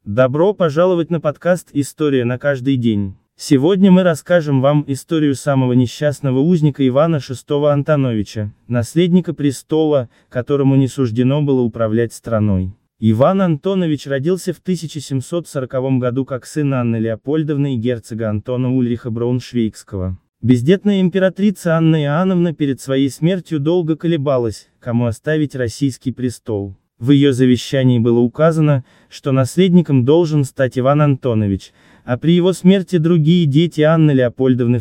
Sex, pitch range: male, 125-160 Hz